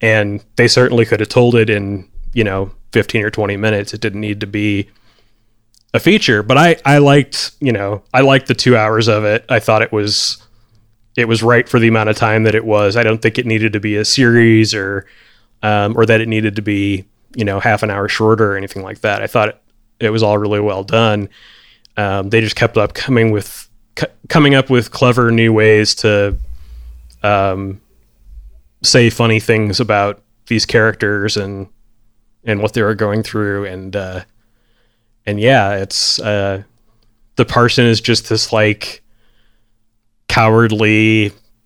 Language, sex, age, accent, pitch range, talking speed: English, male, 30-49, American, 105-115 Hz, 185 wpm